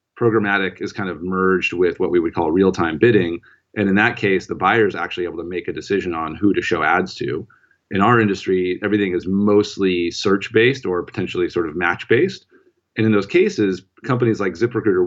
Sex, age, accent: male, 30-49, American